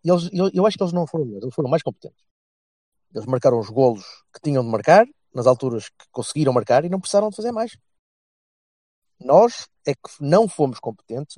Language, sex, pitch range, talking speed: Portuguese, male, 115-160 Hz, 200 wpm